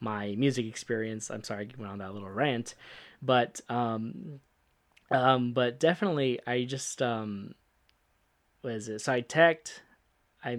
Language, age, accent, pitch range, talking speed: English, 10-29, American, 110-135 Hz, 140 wpm